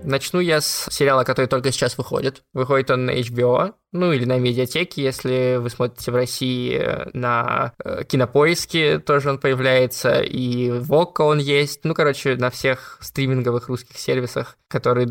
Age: 20-39